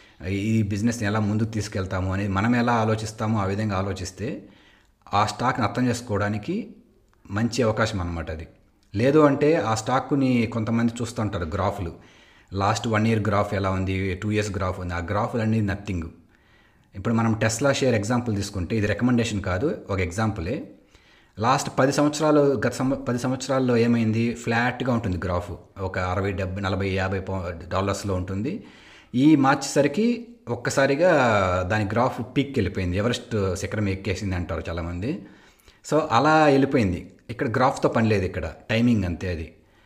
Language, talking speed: Telugu, 140 wpm